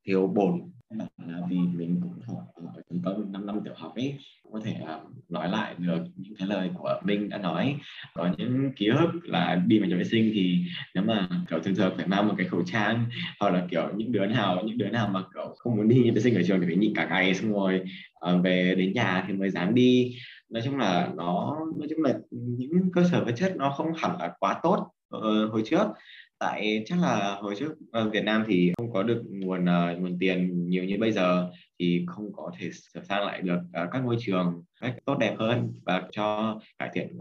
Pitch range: 90-120 Hz